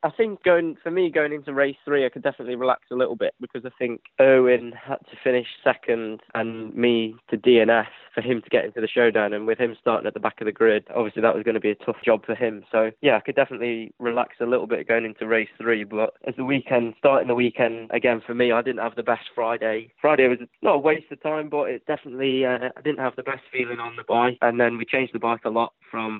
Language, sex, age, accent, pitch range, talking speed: English, male, 10-29, British, 110-130 Hz, 260 wpm